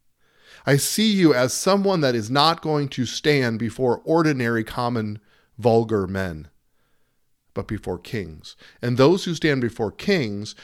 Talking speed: 140 wpm